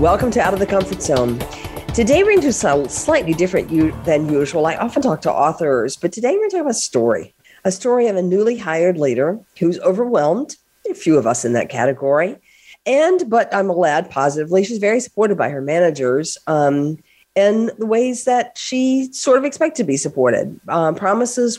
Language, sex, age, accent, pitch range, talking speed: English, female, 50-69, American, 150-215 Hz, 195 wpm